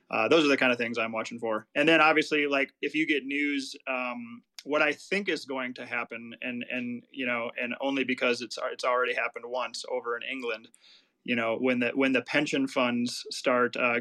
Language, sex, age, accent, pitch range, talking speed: English, male, 30-49, American, 120-140 Hz, 220 wpm